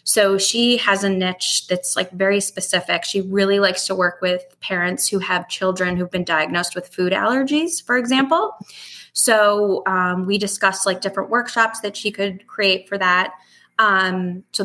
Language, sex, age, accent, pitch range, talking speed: English, female, 20-39, American, 180-200 Hz, 170 wpm